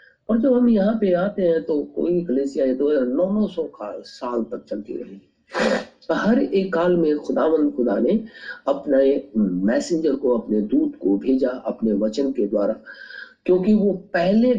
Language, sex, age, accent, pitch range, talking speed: Hindi, male, 50-69, native, 180-275 Hz, 160 wpm